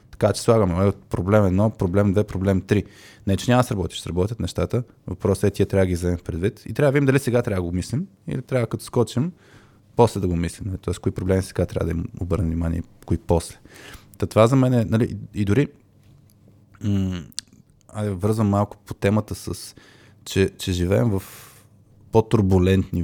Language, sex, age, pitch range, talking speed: Bulgarian, male, 20-39, 95-115 Hz, 190 wpm